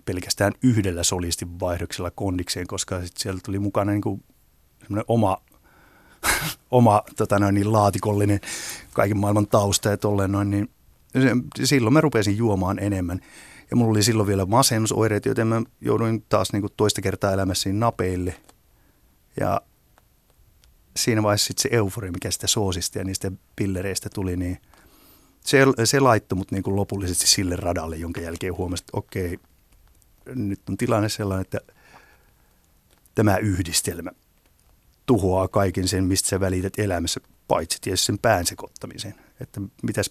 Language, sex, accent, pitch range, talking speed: Finnish, male, native, 90-105 Hz, 135 wpm